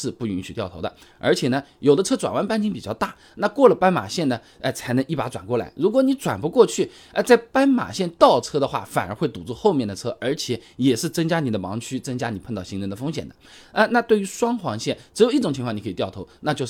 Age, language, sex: 20-39, Chinese, male